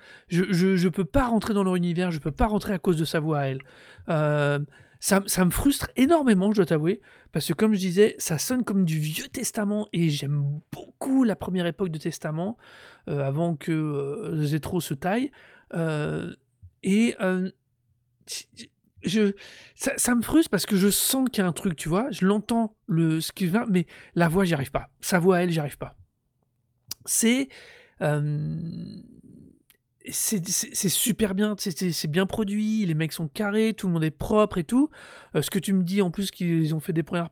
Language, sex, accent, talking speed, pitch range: French, male, French, 210 wpm, 160-205 Hz